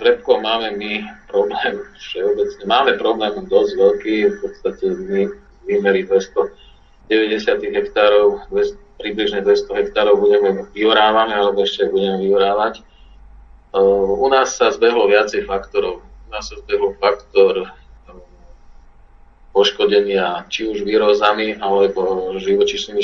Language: Slovak